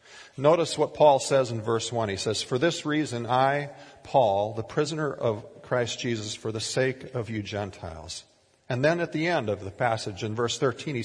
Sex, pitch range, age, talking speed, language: male, 115-150 Hz, 40-59, 200 wpm, English